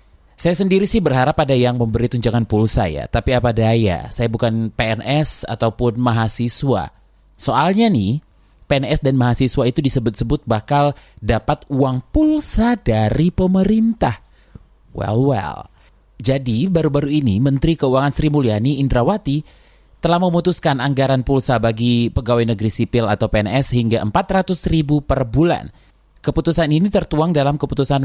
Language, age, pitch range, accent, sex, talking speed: Indonesian, 20-39, 115-150 Hz, native, male, 130 wpm